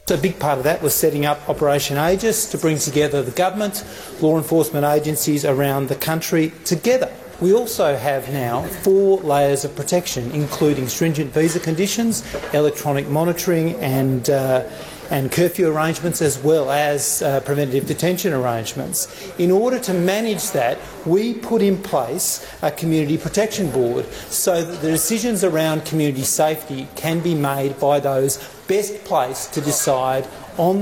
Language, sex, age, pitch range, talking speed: Arabic, male, 40-59, 120-160 Hz, 150 wpm